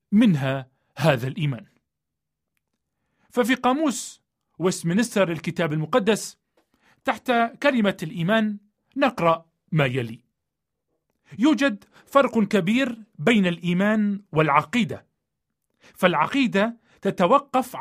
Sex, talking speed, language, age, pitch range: male, 75 wpm, Arabic, 40-59, 160-235 Hz